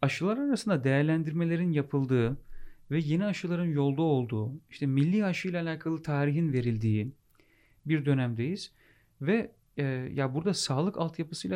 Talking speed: 120 wpm